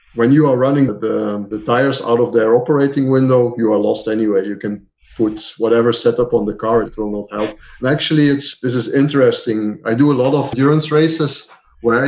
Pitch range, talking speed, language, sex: 115-140 Hz, 210 wpm, English, male